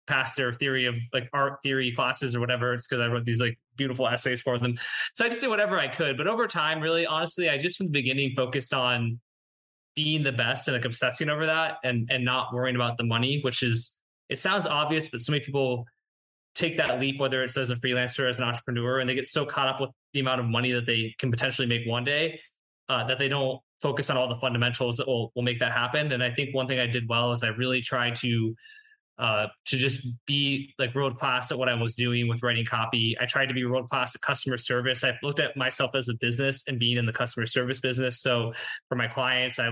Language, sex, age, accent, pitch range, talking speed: English, male, 20-39, American, 120-140 Hz, 245 wpm